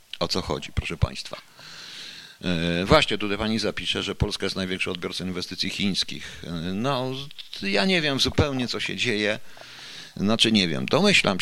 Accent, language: native, Polish